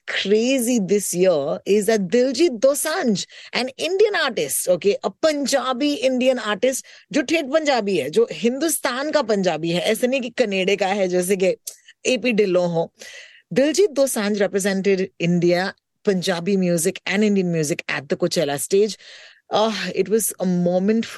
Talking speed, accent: 145 wpm, native